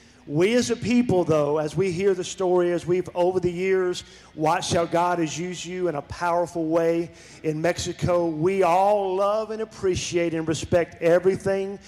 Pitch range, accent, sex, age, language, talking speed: 155-195 Hz, American, male, 40-59, English, 175 wpm